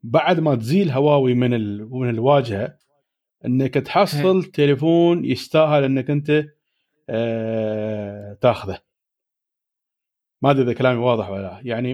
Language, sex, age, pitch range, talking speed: Arabic, male, 40-59, 130-185 Hz, 110 wpm